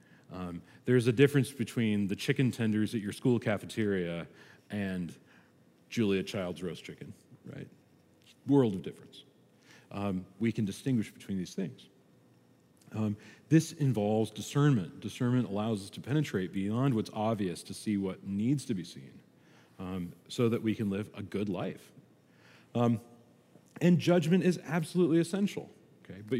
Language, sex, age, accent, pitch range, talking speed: English, male, 40-59, American, 95-130 Hz, 145 wpm